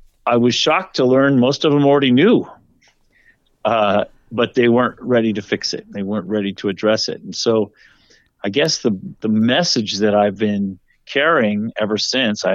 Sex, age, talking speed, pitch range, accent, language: male, 50-69, 180 wpm, 100-120 Hz, American, English